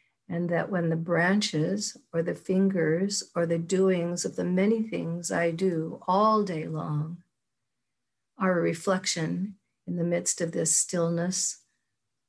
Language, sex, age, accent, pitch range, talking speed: English, female, 50-69, American, 165-195 Hz, 140 wpm